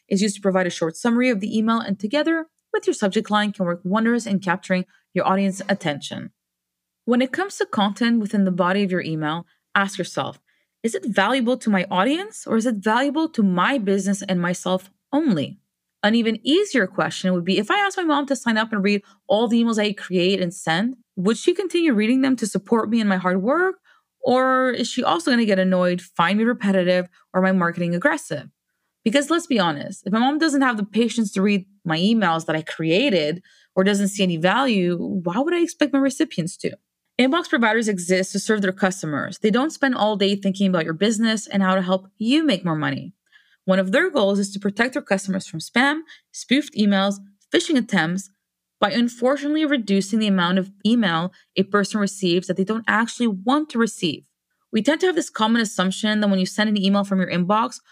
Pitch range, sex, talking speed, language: 190-250 Hz, female, 210 wpm, English